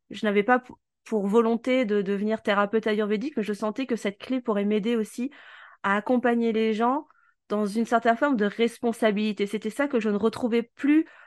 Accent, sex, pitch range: French, female, 205-250 Hz